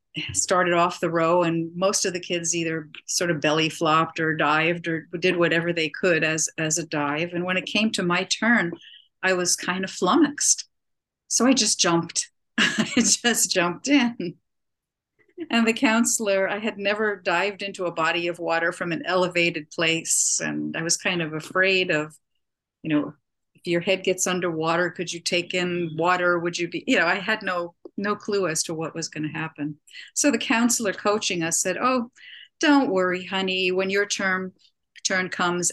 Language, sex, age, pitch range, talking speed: English, female, 50-69, 165-200 Hz, 185 wpm